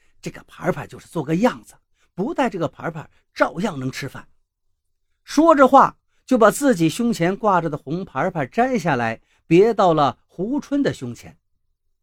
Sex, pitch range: male, 135-220 Hz